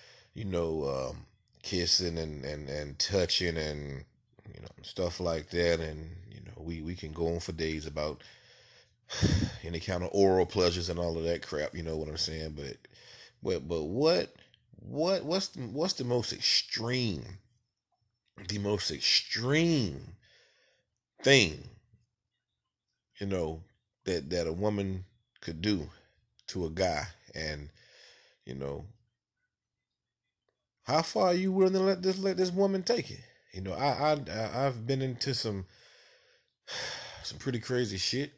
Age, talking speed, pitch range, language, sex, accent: 30-49, 145 wpm, 85-120 Hz, English, male, American